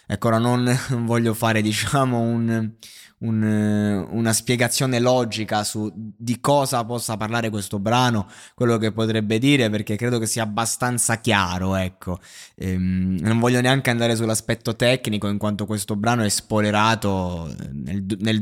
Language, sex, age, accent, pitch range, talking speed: Italian, male, 20-39, native, 100-120 Hz, 145 wpm